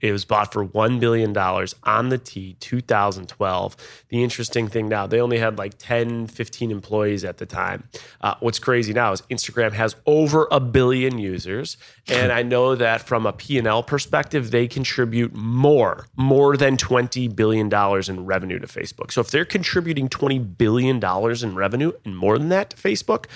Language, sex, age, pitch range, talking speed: English, male, 30-49, 110-135 Hz, 175 wpm